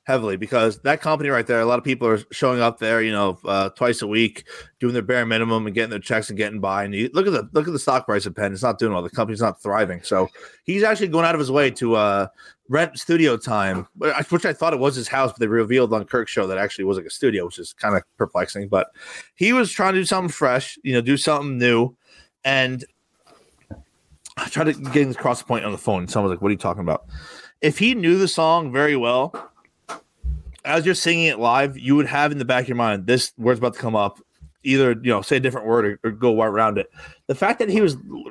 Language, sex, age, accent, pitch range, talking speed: English, male, 30-49, American, 110-155 Hz, 265 wpm